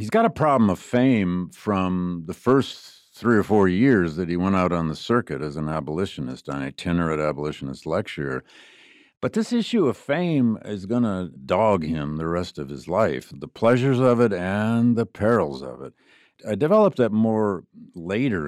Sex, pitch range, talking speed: male, 85-115 Hz, 180 wpm